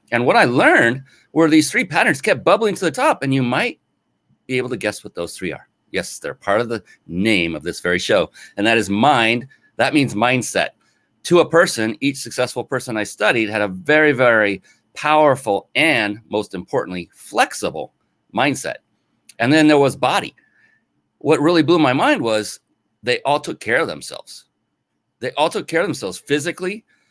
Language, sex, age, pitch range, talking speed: English, male, 30-49, 105-150 Hz, 185 wpm